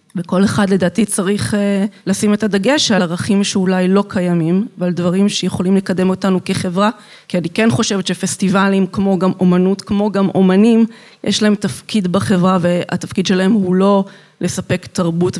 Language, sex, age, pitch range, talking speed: Hebrew, female, 30-49, 185-210 Hz, 150 wpm